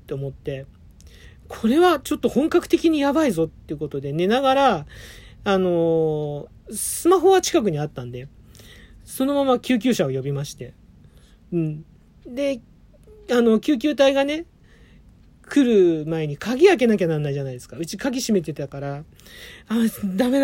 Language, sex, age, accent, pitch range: Japanese, male, 40-59, native, 150-240 Hz